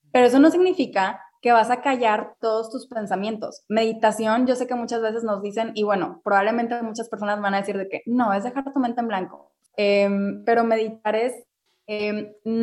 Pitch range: 210-245 Hz